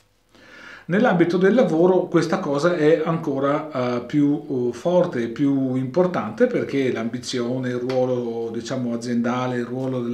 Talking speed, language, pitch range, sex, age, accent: 135 wpm, Italian, 120-165 Hz, male, 40-59, native